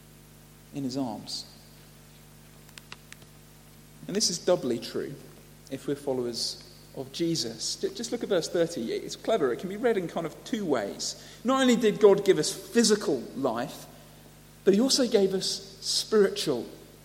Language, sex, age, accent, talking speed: English, male, 40-59, British, 150 wpm